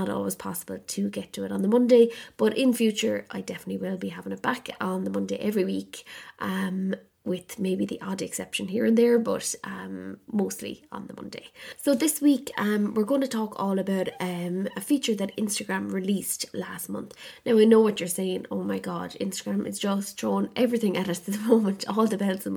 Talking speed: 215 wpm